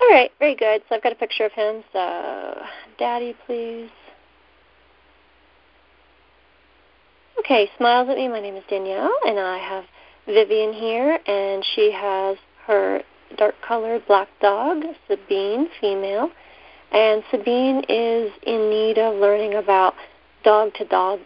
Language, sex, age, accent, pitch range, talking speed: English, female, 40-59, American, 190-260 Hz, 125 wpm